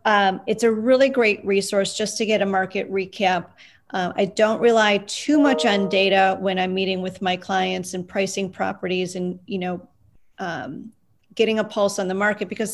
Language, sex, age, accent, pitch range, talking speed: English, female, 40-59, American, 195-230 Hz, 190 wpm